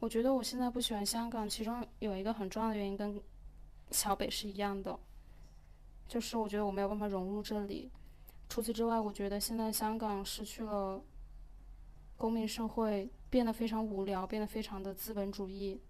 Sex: female